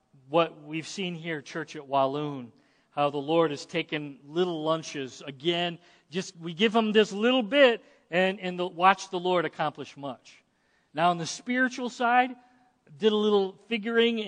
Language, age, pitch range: English, 50-69, 160-210 Hz